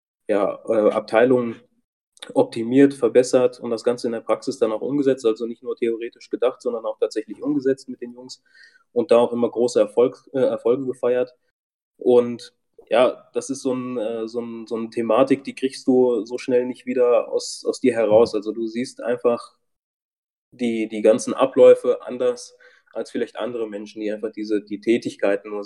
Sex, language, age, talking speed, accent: male, German, 20-39, 180 wpm, German